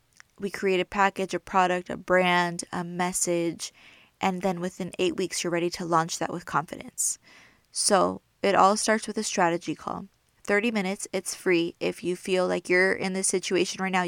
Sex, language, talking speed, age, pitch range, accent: female, English, 190 wpm, 20-39, 175-210 Hz, American